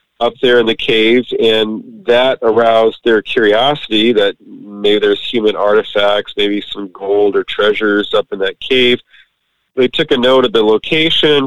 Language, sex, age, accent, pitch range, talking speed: English, male, 40-59, American, 110-145 Hz, 160 wpm